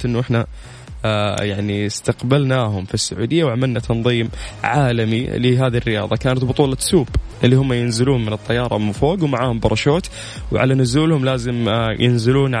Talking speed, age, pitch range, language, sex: 140 wpm, 20-39, 115-145 Hz, Arabic, male